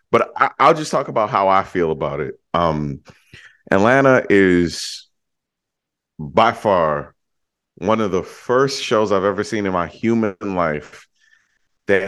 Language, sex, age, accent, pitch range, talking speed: English, male, 30-49, American, 90-115 Hz, 140 wpm